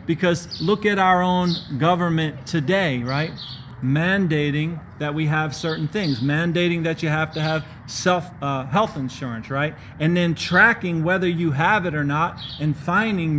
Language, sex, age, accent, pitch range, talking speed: English, male, 40-59, American, 140-175 Hz, 160 wpm